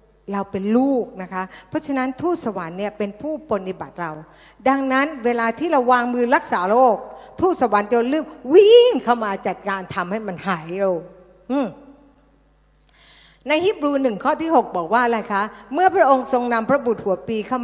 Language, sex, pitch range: Thai, female, 205-270 Hz